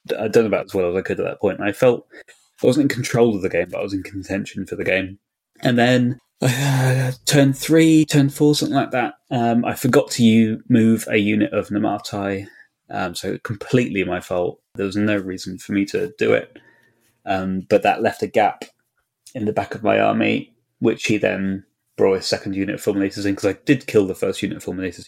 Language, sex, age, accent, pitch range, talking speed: English, male, 20-39, British, 95-120 Hz, 220 wpm